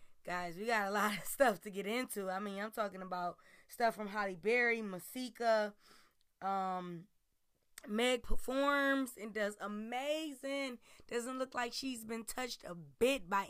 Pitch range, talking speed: 195-245 Hz, 155 wpm